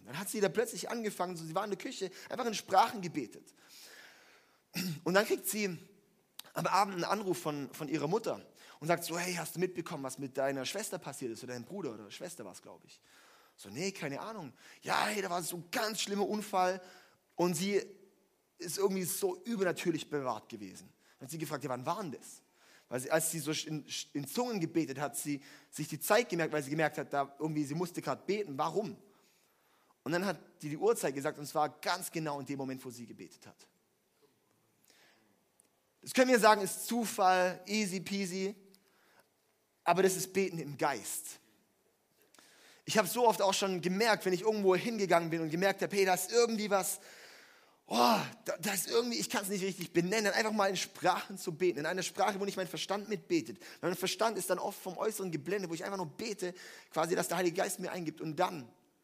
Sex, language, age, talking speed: male, German, 30-49, 210 wpm